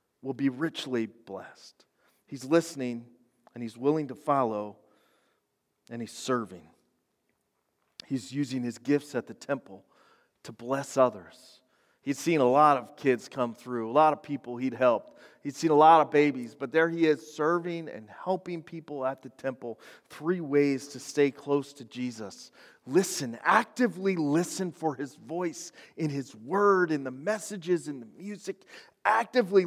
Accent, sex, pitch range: American, male, 130-190 Hz